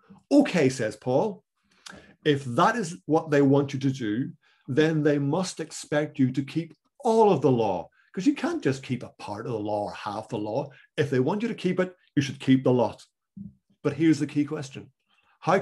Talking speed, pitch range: 210 wpm, 120-150 Hz